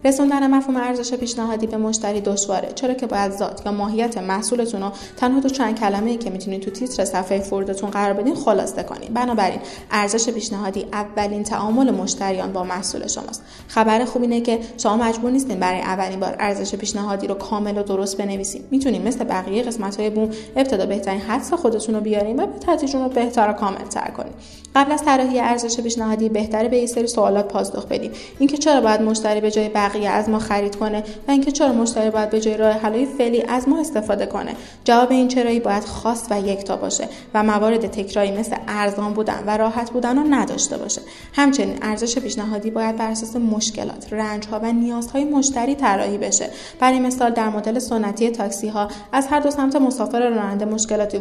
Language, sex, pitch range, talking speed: Persian, female, 205-245 Hz, 185 wpm